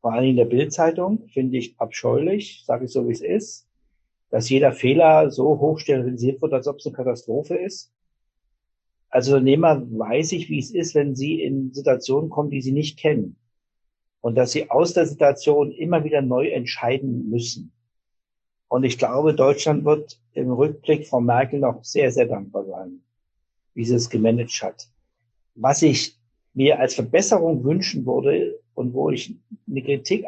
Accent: German